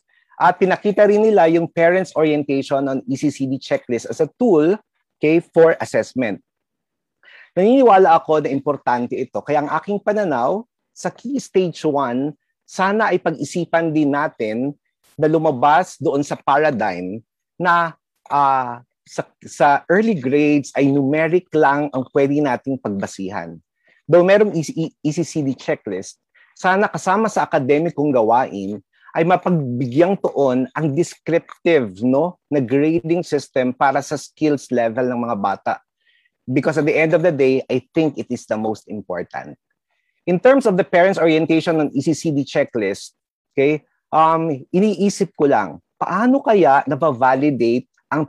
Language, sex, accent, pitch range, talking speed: Filipino, male, native, 130-175 Hz, 135 wpm